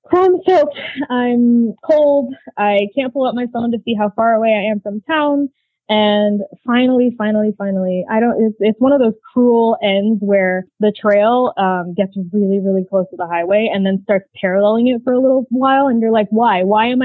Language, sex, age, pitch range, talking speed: English, female, 20-39, 185-235 Hz, 205 wpm